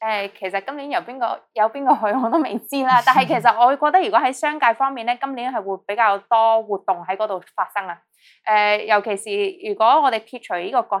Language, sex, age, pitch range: Chinese, female, 20-39, 195-250 Hz